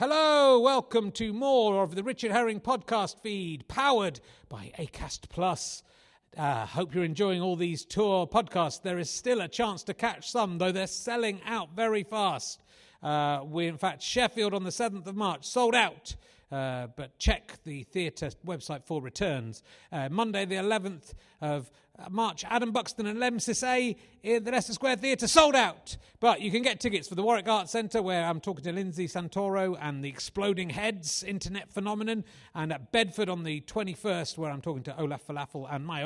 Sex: male